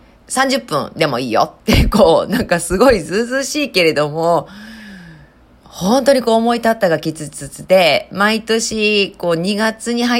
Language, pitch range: Japanese, 165-235 Hz